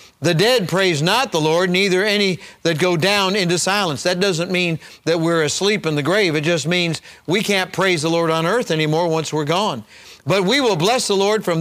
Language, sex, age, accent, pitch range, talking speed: English, male, 50-69, American, 155-195 Hz, 220 wpm